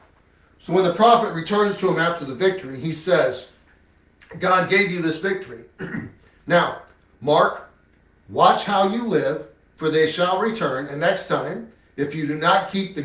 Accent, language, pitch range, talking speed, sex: American, English, 125-195 Hz, 165 wpm, male